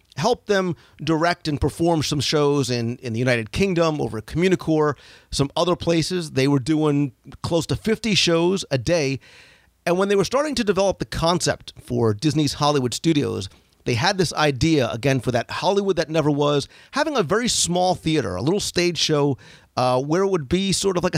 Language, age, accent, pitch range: English, 40-59, American, 125-165 Hz